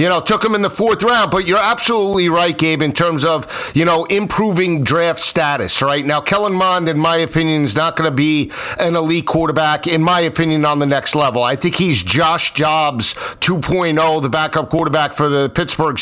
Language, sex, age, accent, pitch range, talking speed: English, male, 50-69, American, 160-195 Hz, 205 wpm